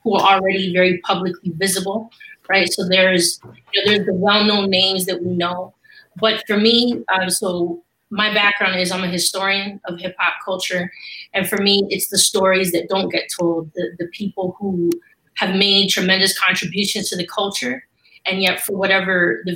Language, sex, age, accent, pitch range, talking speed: English, female, 20-39, American, 175-200 Hz, 180 wpm